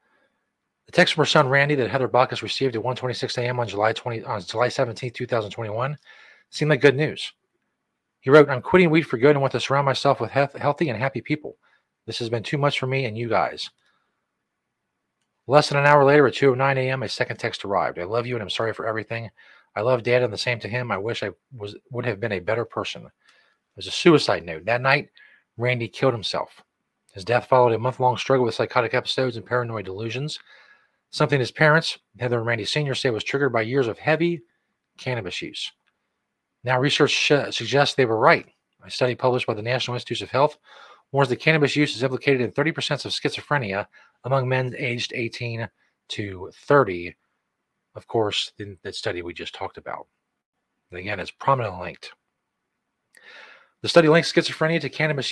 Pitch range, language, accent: 115-145 Hz, English, American